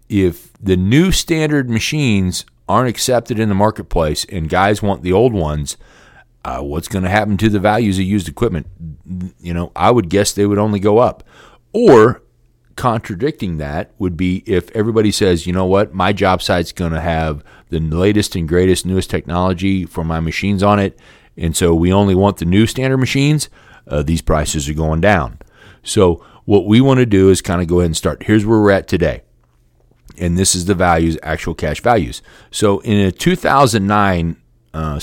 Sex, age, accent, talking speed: male, 40-59, American, 190 wpm